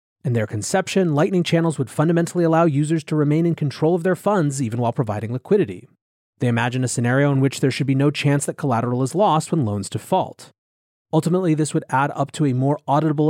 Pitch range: 120-165 Hz